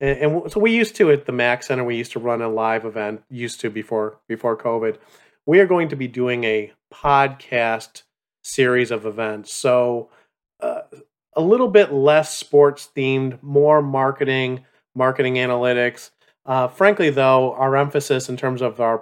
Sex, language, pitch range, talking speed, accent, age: male, English, 120-145 Hz, 165 wpm, American, 40-59